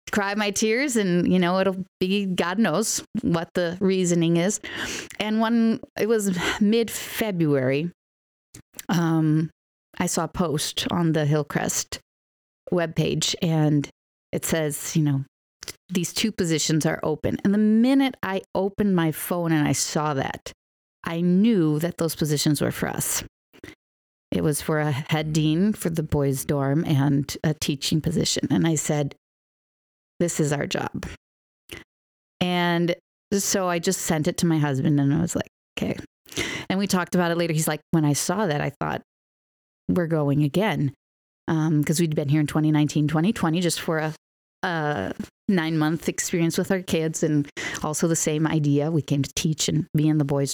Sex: female